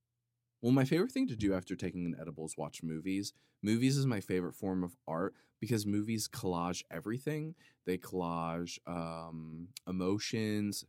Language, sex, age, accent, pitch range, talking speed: English, male, 20-39, American, 85-110 Hz, 155 wpm